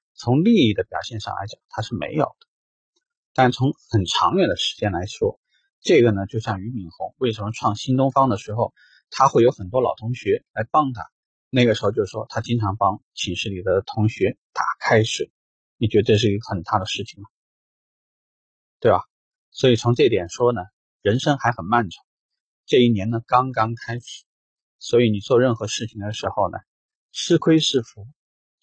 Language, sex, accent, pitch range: Chinese, male, native, 100-130 Hz